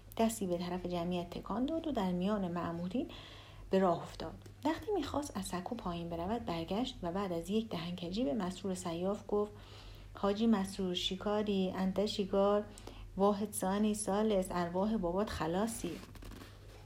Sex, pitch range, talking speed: female, 170-225 Hz, 140 wpm